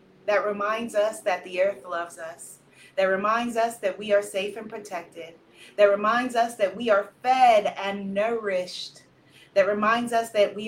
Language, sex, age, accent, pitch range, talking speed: English, female, 30-49, American, 175-220 Hz, 175 wpm